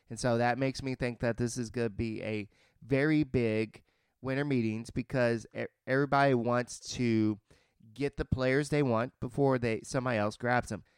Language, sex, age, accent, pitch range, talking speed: English, male, 30-49, American, 115-135 Hz, 175 wpm